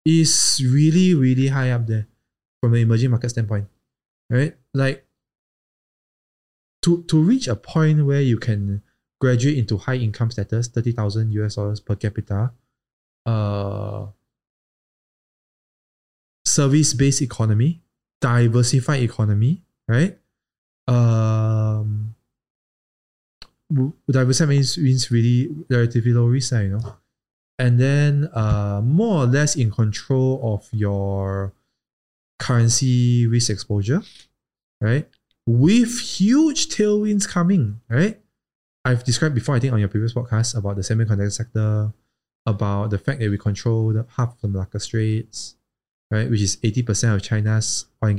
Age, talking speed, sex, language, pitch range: 20-39, 125 wpm, male, English, 105-130 Hz